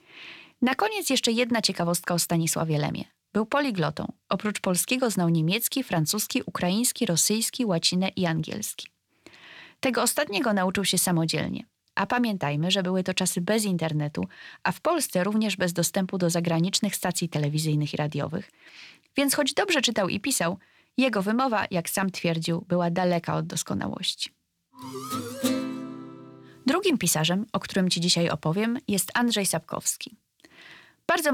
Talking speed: 135 wpm